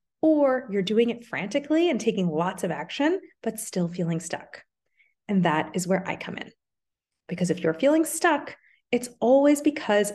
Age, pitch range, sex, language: 30-49, 195-275 Hz, female, English